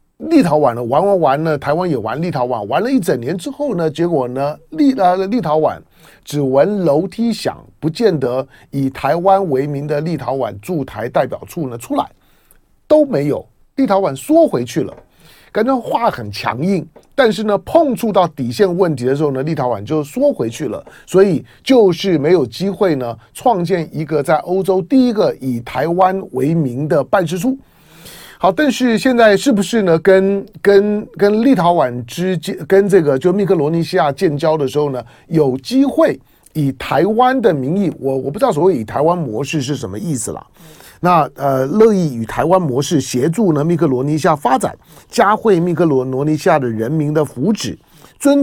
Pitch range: 140-200 Hz